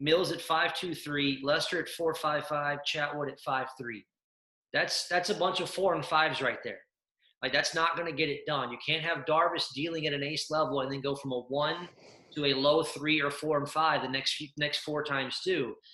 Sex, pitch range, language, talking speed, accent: male, 140-170 Hz, English, 230 wpm, American